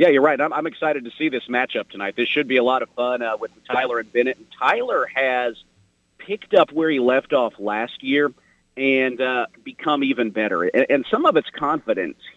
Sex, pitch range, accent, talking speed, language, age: male, 125-155 Hz, American, 220 wpm, English, 40-59